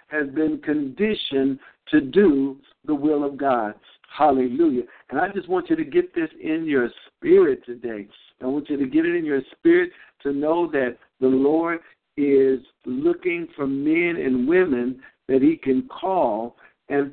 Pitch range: 135-190 Hz